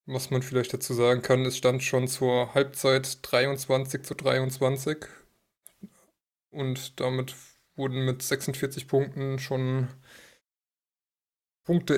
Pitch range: 125-140 Hz